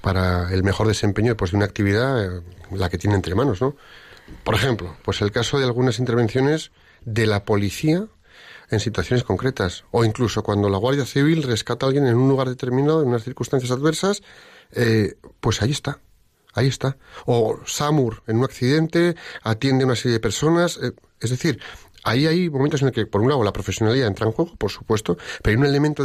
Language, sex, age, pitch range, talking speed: Spanish, male, 40-59, 105-145 Hz, 200 wpm